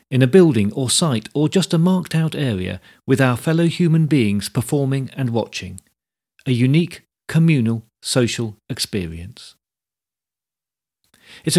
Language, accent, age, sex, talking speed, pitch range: English, British, 40-59, male, 130 wpm, 110-155 Hz